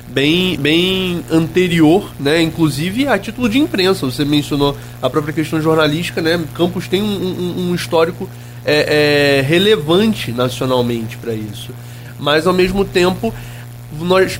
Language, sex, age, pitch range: Portuguese, male, 20-39, 135-185 Hz